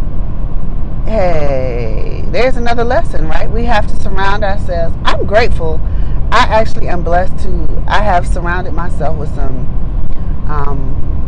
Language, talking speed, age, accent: English, 130 wpm, 30-49, American